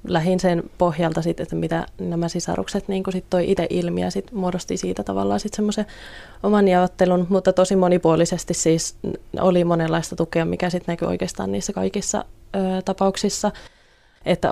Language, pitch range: Finnish, 165-185 Hz